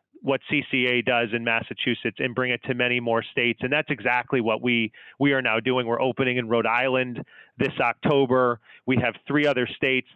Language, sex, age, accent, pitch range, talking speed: English, male, 30-49, American, 125-145 Hz, 195 wpm